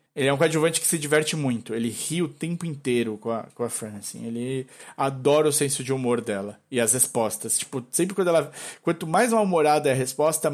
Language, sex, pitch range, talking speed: Portuguese, male, 115-145 Hz, 235 wpm